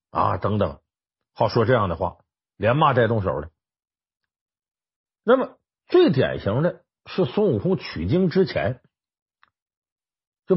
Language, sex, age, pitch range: Chinese, male, 50-69, 100-165 Hz